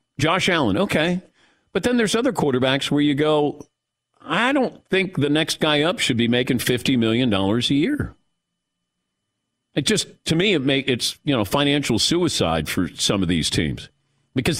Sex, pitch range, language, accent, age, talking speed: male, 115-155 Hz, English, American, 50-69, 175 wpm